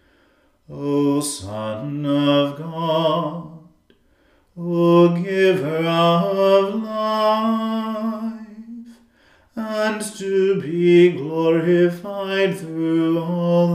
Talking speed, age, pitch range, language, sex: 60 wpm, 40-59, 155-170 Hz, English, male